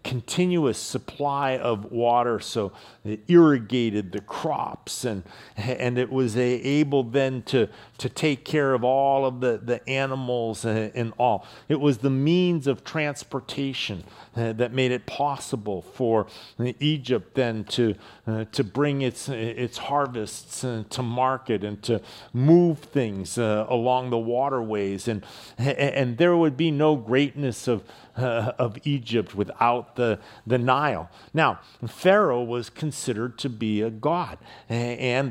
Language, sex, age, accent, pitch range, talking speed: English, male, 50-69, American, 110-135 Hz, 140 wpm